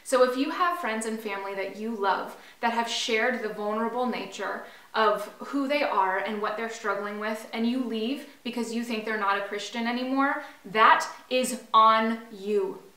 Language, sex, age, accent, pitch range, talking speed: English, female, 20-39, American, 210-250 Hz, 185 wpm